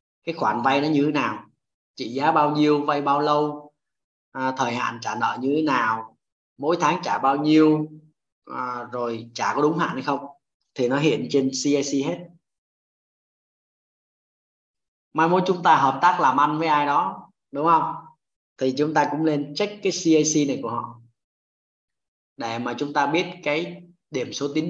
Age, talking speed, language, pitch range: 20-39, 180 wpm, Vietnamese, 125-155 Hz